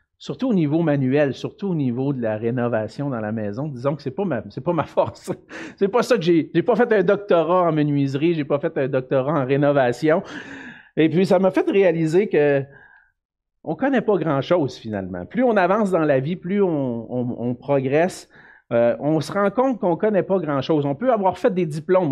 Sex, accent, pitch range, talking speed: male, Canadian, 135-195 Hz, 215 wpm